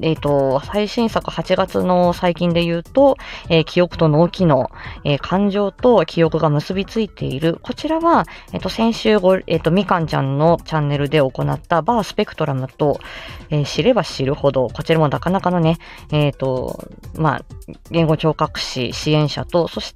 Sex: female